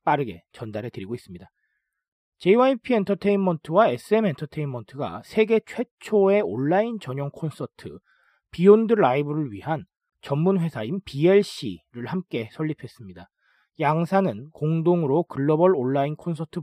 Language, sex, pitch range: Korean, male, 135-200 Hz